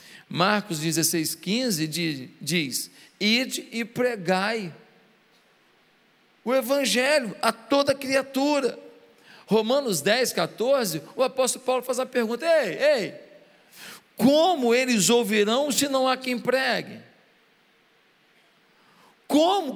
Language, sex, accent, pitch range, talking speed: Portuguese, male, Brazilian, 185-270 Hz, 90 wpm